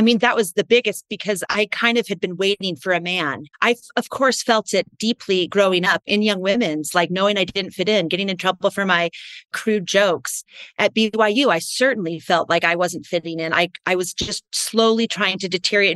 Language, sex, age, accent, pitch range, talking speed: English, female, 30-49, American, 175-210 Hz, 220 wpm